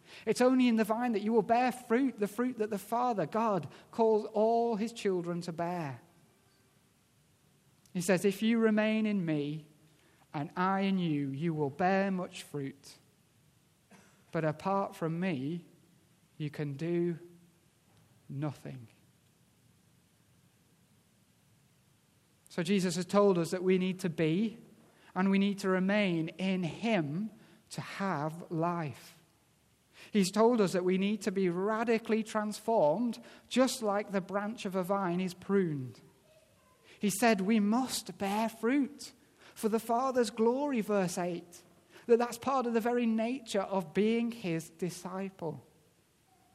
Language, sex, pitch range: English, male, 170-220 Hz